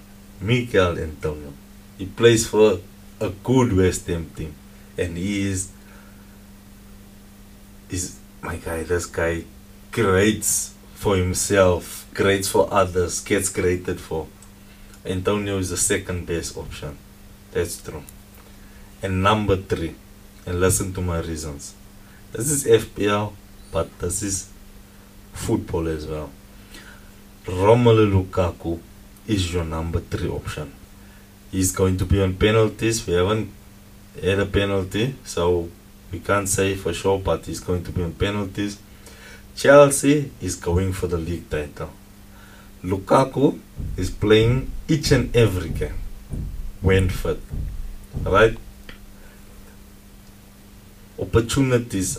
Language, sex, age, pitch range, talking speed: English, male, 30-49, 90-100 Hz, 115 wpm